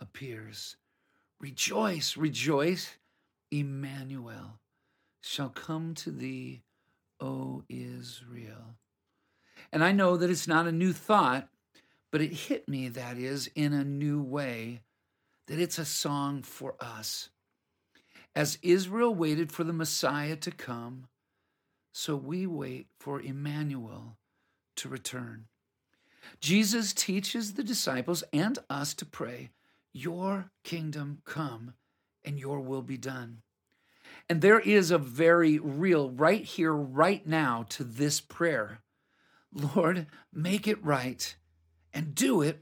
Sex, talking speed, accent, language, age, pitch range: male, 120 wpm, American, English, 50-69, 130-180 Hz